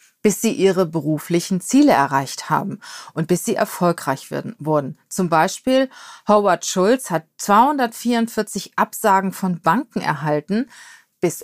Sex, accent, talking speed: female, German, 125 wpm